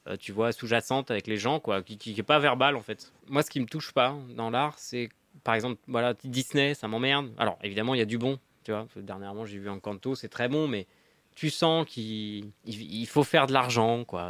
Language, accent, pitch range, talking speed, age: French, French, 105-140 Hz, 250 wpm, 20-39